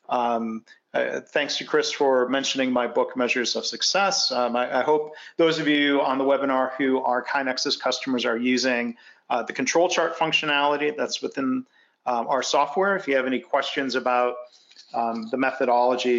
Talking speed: 175 wpm